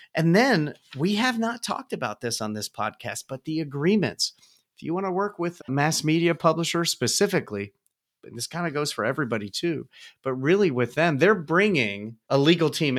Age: 40-59